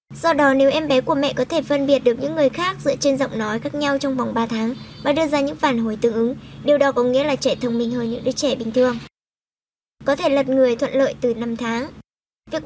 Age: 10-29